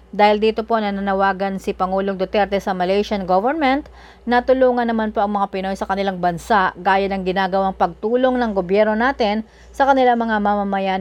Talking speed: 170 wpm